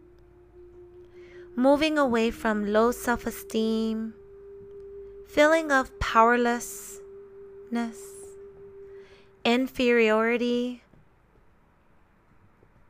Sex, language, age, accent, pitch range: female, English, 20-39, American, 205-300 Hz